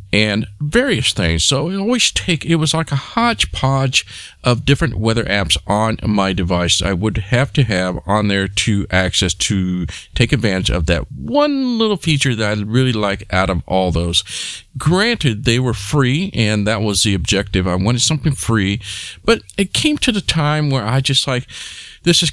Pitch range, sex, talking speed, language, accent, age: 100-135 Hz, male, 185 wpm, English, American, 50-69